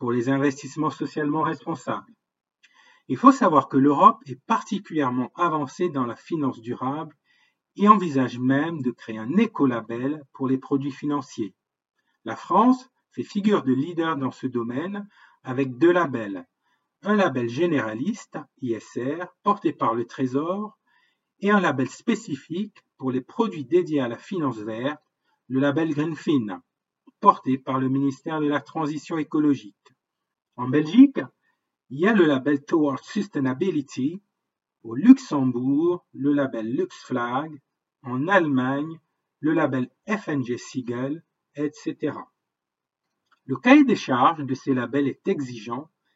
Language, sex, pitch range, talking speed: French, male, 130-175 Hz, 130 wpm